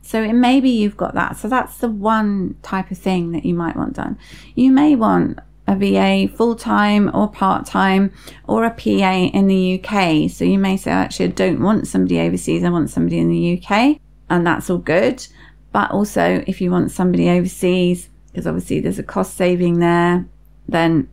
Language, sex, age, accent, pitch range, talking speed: English, female, 30-49, British, 165-195 Hz, 195 wpm